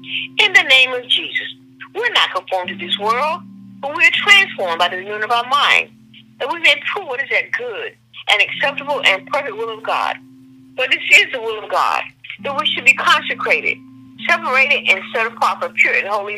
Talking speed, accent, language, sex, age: 200 wpm, American, English, female, 50-69